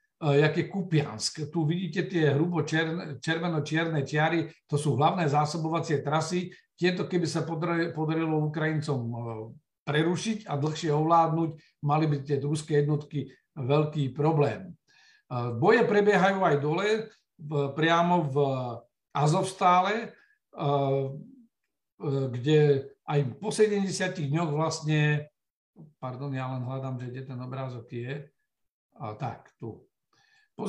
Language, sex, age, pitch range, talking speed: Slovak, male, 50-69, 145-180 Hz, 110 wpm